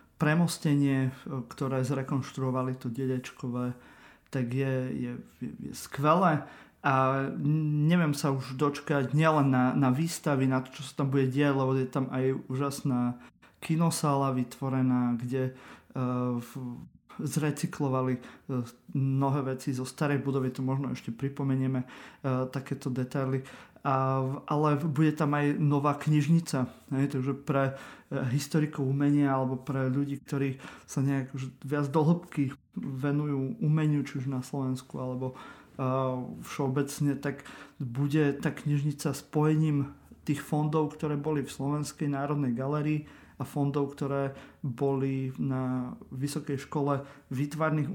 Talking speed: 125 wpm